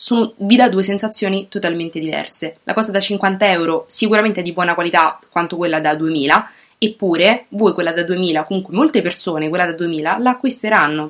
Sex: female